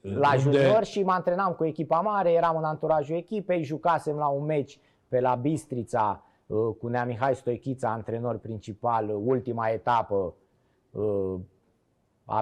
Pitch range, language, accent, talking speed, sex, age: 120-155 Hz, Romanian, native, 135 wpm, male, 20-39